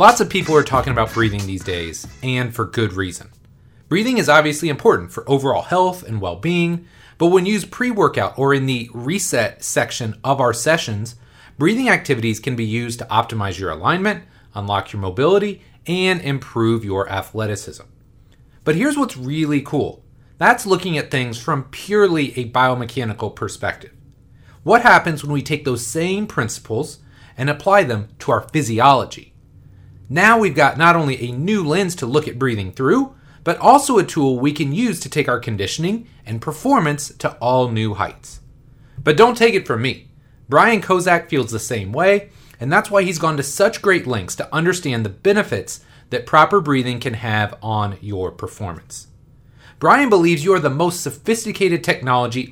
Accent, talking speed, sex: American, 170 wpm, male